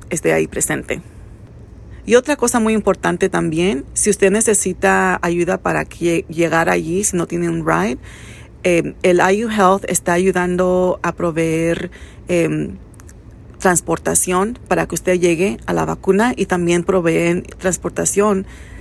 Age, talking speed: 40-59, 135 wpm